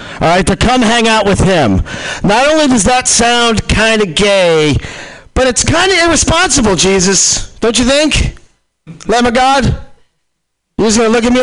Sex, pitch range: male, 150-235 Hz